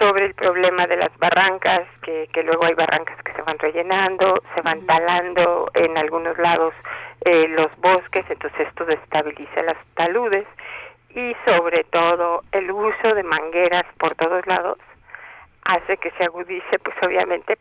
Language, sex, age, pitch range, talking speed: Spanish, female, 50-69, 170-210 Hz, 155 wpm